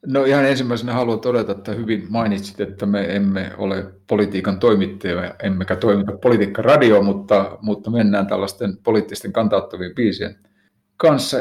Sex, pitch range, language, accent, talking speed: male, 100-110 Hz, Finnish, native, 130 wpm